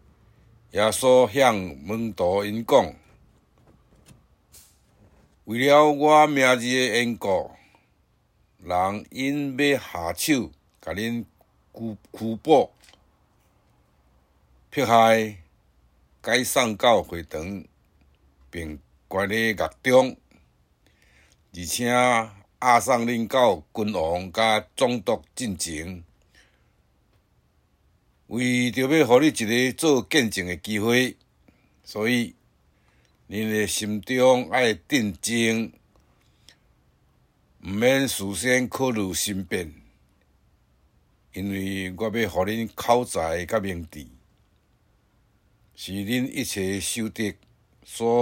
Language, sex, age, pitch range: Chinese, male, 60-79, 95-120 Hz